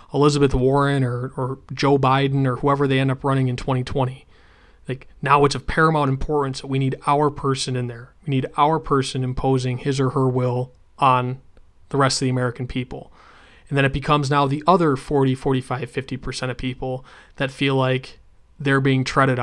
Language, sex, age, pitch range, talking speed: English, male, 20-39, 130-145 Hz, 190 wpm